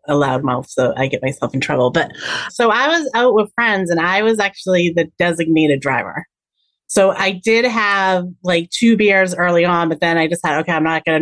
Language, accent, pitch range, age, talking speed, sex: English, American, 160-210 Hz, 30-49, 220 wpm, female